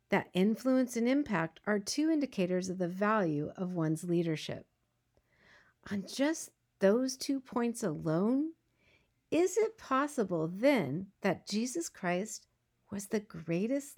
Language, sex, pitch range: English, female, 185-260 Hz